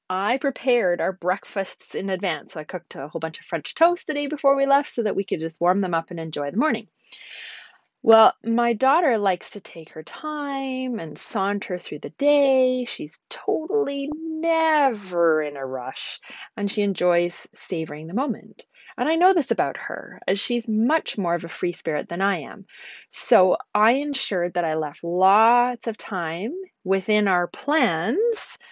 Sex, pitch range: female, 185-255 Hz